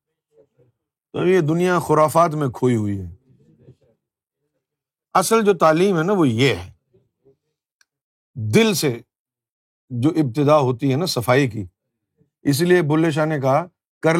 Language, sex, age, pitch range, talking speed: Urdu, male, 50-69, 145-210 Hz, 125 wpm